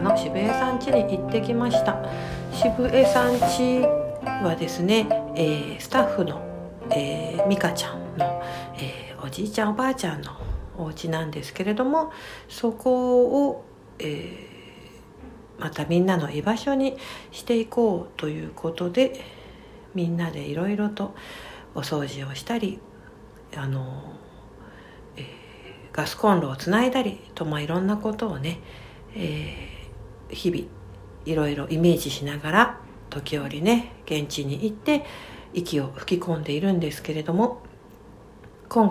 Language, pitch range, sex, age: Japanese, 150-220 Hz, female, 60-79